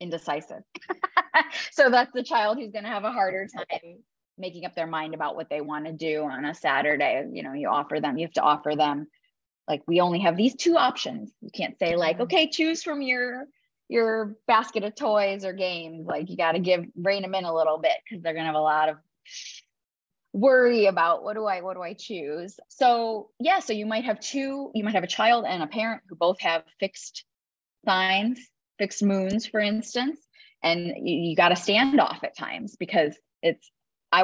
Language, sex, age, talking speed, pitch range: English, female, 20-39, 210 wpm, 165-230 Hz